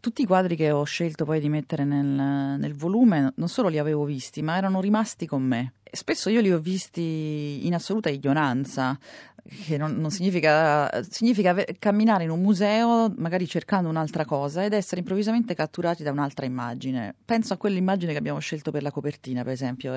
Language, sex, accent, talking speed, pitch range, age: Italian, female, native, 185 wpm, 145-185 Hz, 30-49